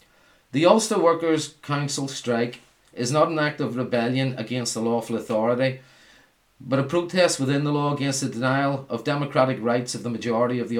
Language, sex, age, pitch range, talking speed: English, male, 40-59, 120-145 Hz, 180 wpm